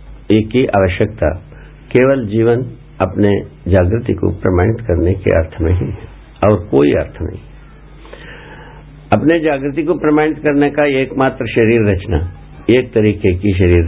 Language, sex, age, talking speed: Hindi, male, 60-79, 135 wpm